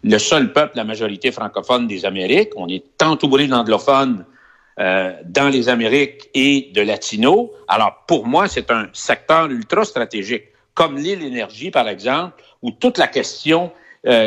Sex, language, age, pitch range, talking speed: male, French, 60-79, 135-230 Hz, 150 wpm